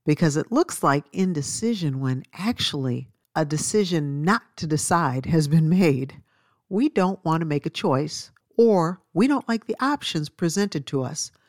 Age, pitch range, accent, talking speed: 50-69, 145-195 Hz, American, 160 wpm